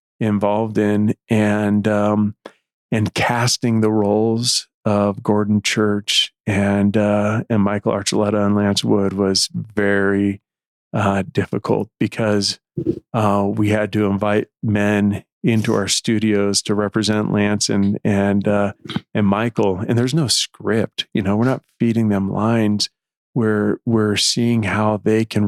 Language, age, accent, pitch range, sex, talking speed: English, 40-59, American, 100-115 Hz, male, 135 wpm